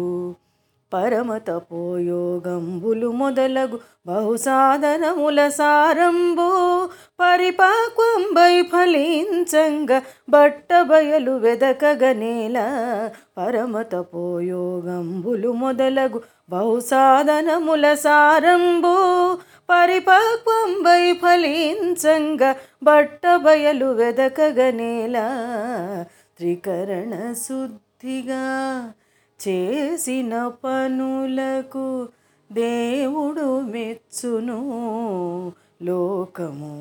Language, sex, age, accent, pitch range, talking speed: Telugu, female, 30-49, native, 180-275 Hz, 45 wpm